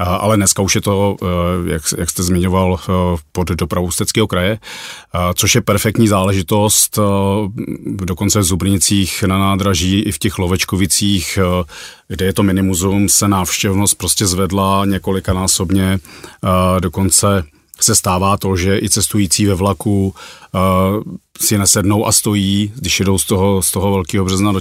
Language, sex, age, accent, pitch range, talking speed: Czech, male, 40-59, native, 90-100 Hz, 145 wpm